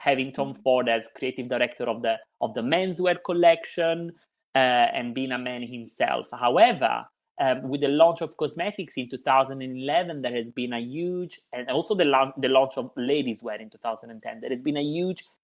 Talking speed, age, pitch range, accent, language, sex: 185 wpm, 30-49, 135-180 Hz, Italian, English, male